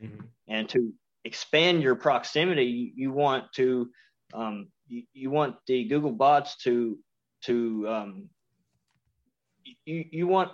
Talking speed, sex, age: 120 wpm, male, 30-49